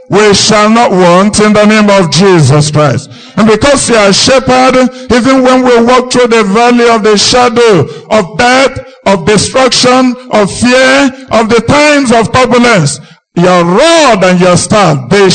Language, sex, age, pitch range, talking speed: English, male, 50-69, 155-235 Hz, 170 wpm